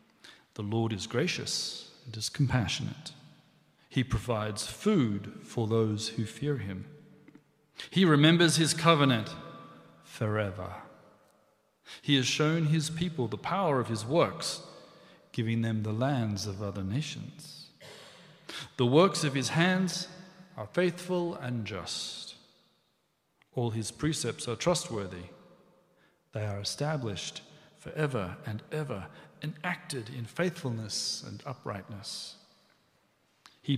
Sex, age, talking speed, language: male, 40-59, 115 wpm, English